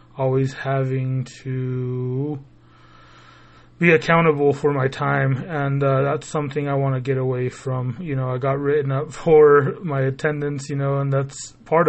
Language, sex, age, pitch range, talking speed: English, male, 20-39, 130-145 Hz, 160 wpm